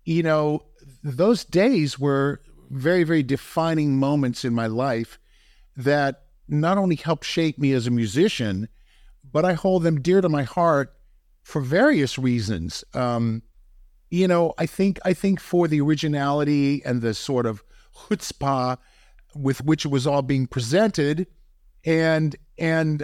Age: 50-69